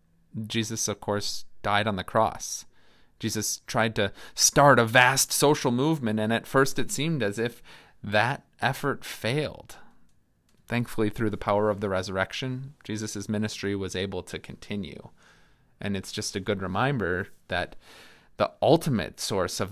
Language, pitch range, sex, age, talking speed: English, 100-125 Hz, male, 30-49, 150 wpm